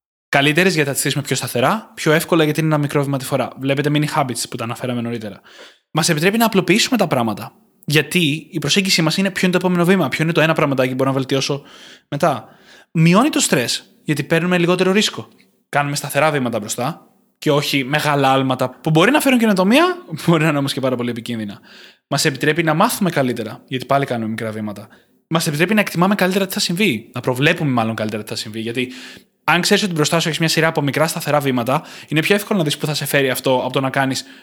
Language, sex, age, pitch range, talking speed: Greek, male, 20-39, 135-175 Hz, 225 wpm